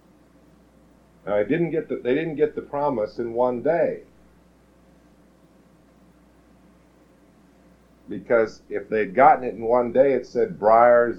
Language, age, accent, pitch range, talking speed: English, 50-69, American, 110-145 Hz, 130 wpm